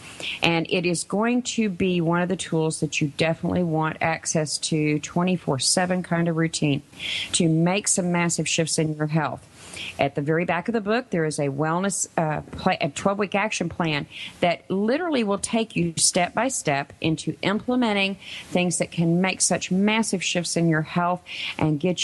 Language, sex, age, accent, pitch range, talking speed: English, female, 40-59, American, 155-195 Hz, 175 wpm